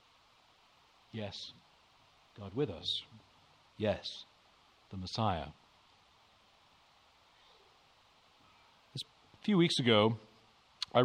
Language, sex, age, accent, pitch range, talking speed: English, male, 40-59, American, 105-135 Hz, 65 wpm